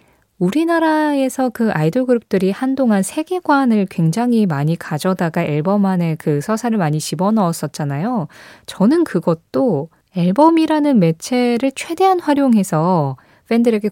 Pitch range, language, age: 165-245 Hz, Korean, 20-39